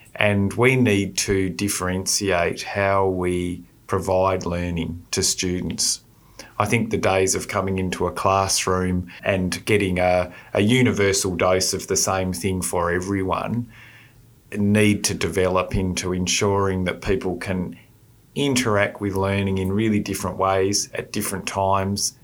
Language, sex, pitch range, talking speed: English, male, 90-105 Hz, 135 wpm